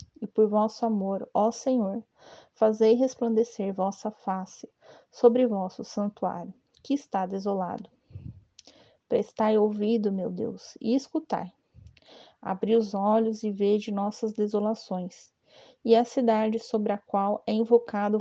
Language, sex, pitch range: Portuguese, female, 200-230 Hz